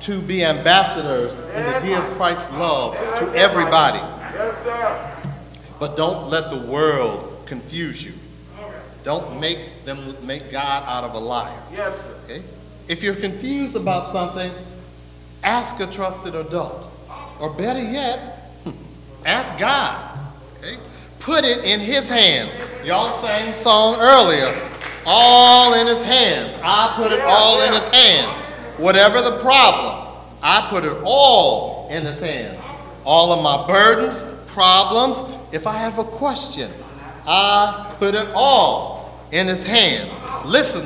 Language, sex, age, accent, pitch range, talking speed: English, male, 50-69, American, 140-225 Hz, 135 wpm